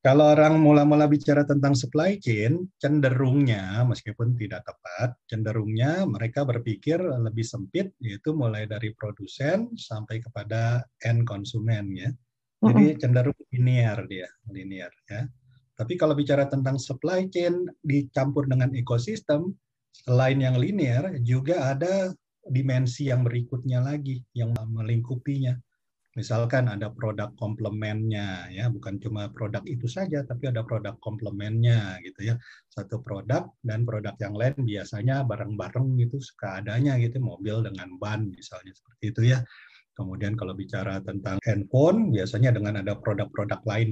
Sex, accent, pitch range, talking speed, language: male, Indonesian, 110-135 Hz, 130 wpm, English